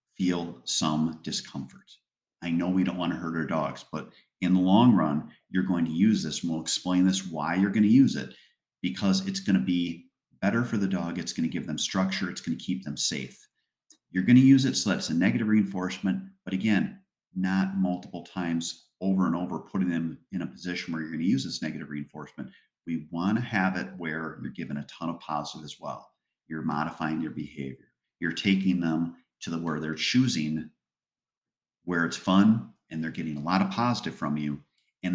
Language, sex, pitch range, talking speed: English, male, 85-105 Hz, 210 wpm